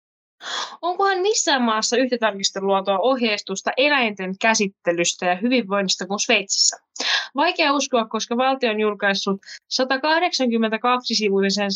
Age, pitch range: 20-39, 195-255 Hz